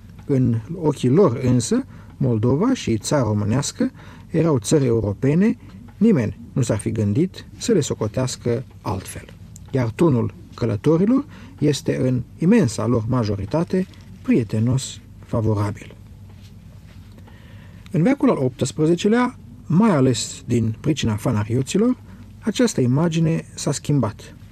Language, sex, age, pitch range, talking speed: Romanian, male, 50-69, 110-165 Hz, 105 wpm